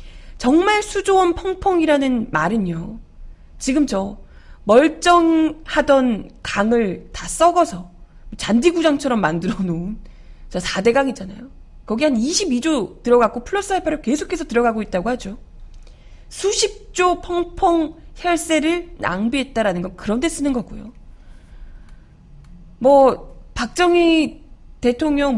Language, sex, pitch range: Korean, female, 195-320 Hz